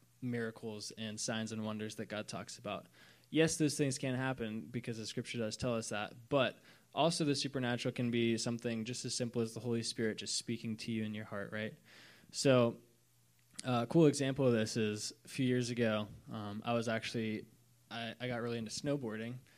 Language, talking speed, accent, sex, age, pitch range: English, 195 wpm, American, male, 20-39, 110-125 Hz